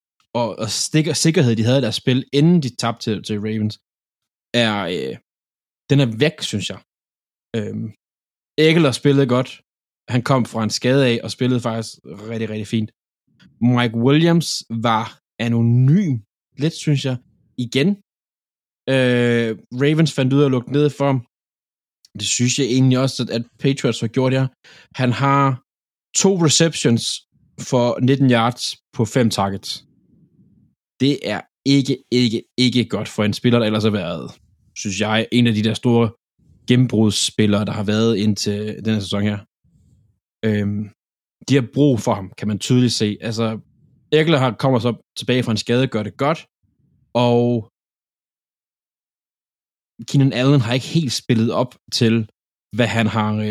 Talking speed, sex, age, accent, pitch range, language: 155 wpm, male, 20-39, native, 110-135 Hz, Danish